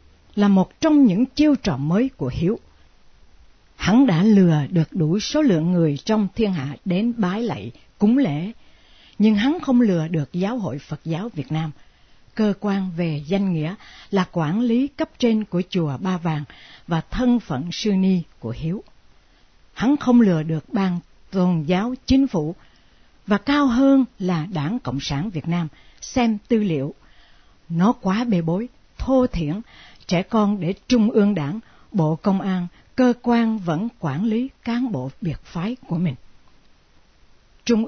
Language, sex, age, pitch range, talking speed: Vietnamese, female, 60-79, 155-225 Hz, 165 wpm